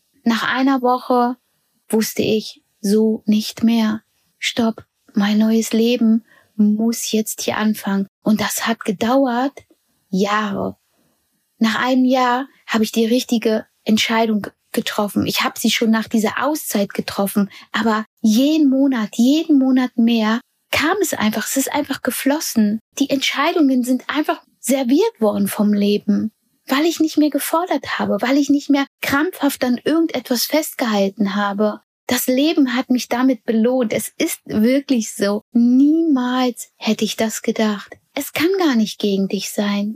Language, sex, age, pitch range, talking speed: German, female, 20-39, 220-275 Hz, 145 wpm